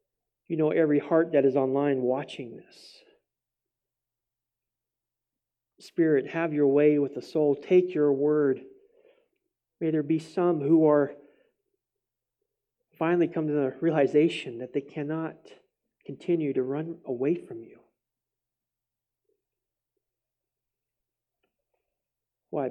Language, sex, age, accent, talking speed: English, male, 40-59, American, 105 wpm